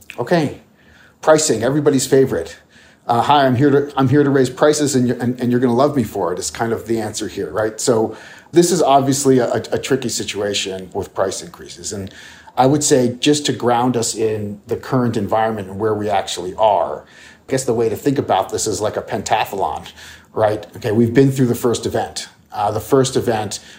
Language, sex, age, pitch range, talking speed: English, male, 50-69, 105-125 Hz, 215 wpm